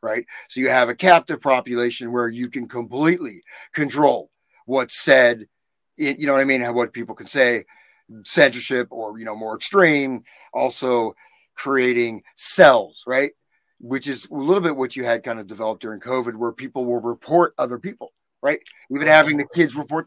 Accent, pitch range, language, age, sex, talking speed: American, 120-150 Hz, English, 30-49, male, 175 wpm